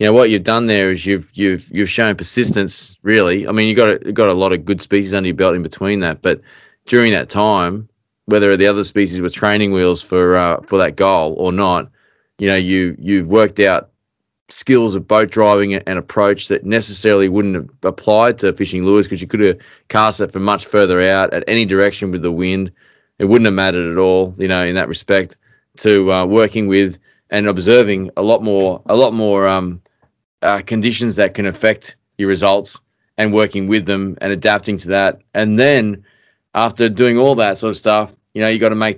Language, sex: English, male